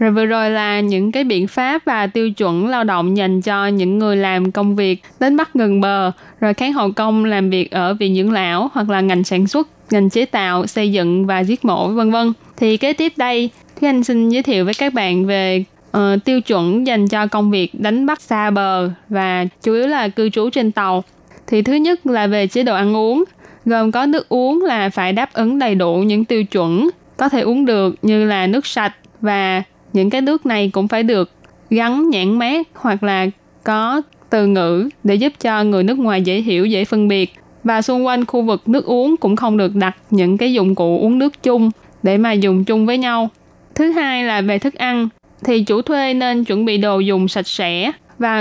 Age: 10-29